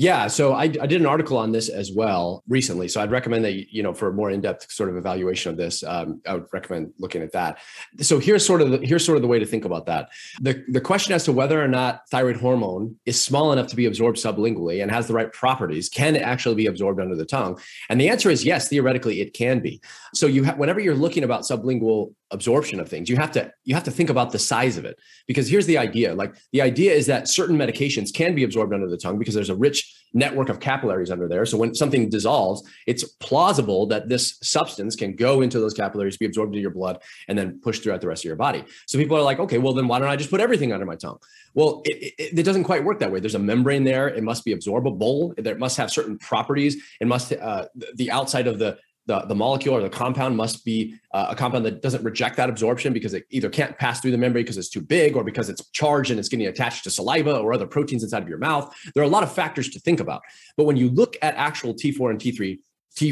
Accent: American